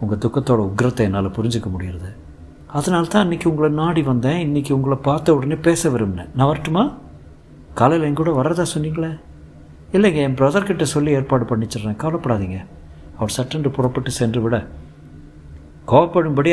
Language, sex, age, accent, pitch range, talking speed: Tamil, male, 60-79, native, 95-140 Hz, 135 wpm